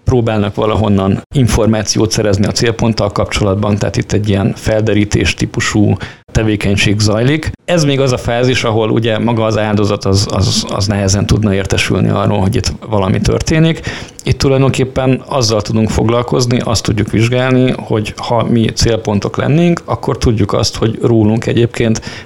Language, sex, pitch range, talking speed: Hungarian, male, 105-120 Hz, 145 wpm